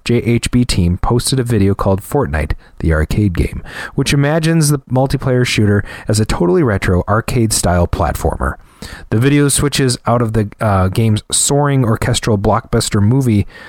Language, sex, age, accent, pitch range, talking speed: English, male, 30-49, American, 100-130 Hz, 150 wpm